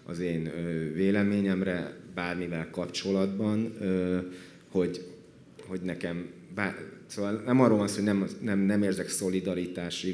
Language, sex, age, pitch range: Hungarian, male, 30-49, 85-100 Hz